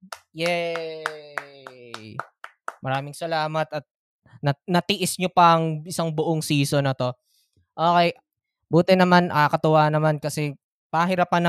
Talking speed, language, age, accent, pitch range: 115 wpm, Filipino, 20-39, native, 125-170 Hz